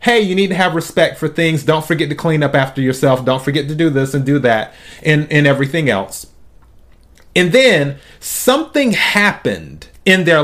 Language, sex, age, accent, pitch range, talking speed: English, male, 30-49, American, 130-195 Hz, 190 wpm